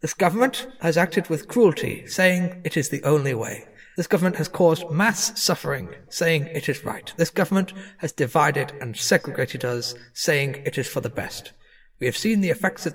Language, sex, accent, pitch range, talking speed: English, male, British, 125-170 Hz, 190 wpm